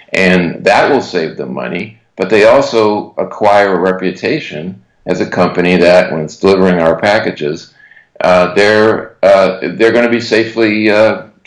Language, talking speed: English, 155 wpm